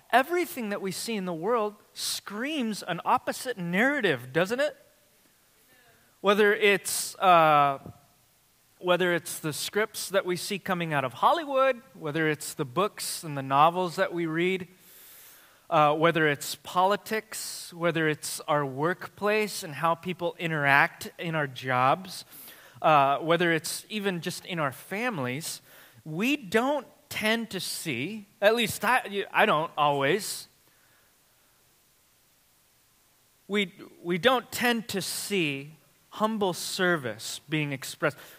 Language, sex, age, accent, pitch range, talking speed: English, male, 20-39, American, 155-210 Hz, 125 wpm